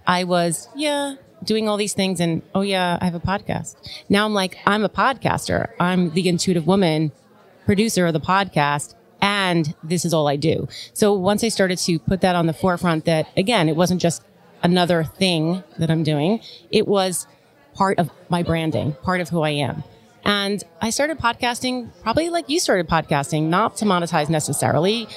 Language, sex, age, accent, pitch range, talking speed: English, female, 30-49, American, 165-210 Hz, 185 wpm